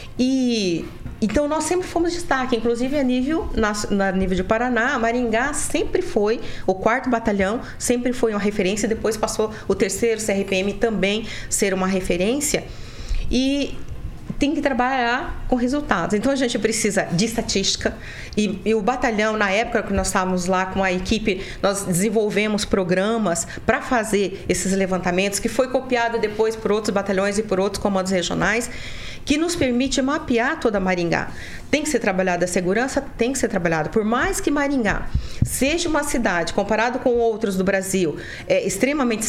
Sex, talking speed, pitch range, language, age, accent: female, 165 wpm, 195-250 Hz, Portuguese, 40-59, Brazilian